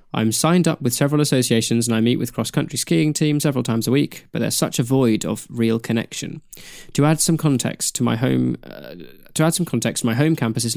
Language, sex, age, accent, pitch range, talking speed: English, male, 20-39, British, 115-145 Hz, 230 wpm